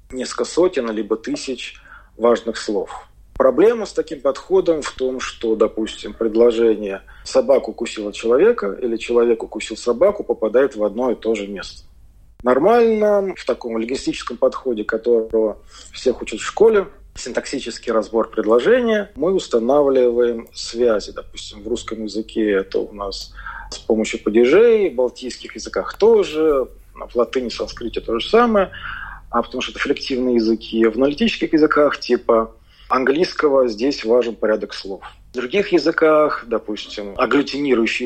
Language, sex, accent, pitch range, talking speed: Russian, male, native, 115-155 Hz, 130 wpm